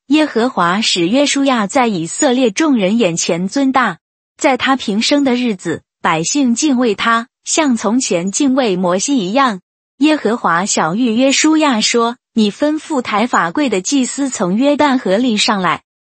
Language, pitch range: Chinese, 205-275 Hz